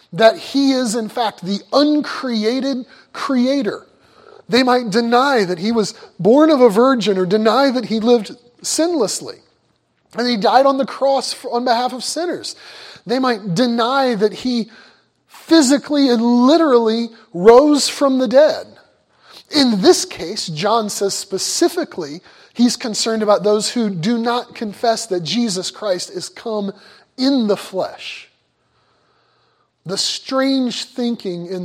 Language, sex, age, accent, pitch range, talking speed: English, male, 30-49, American, 200-260 Hz, 135 wpm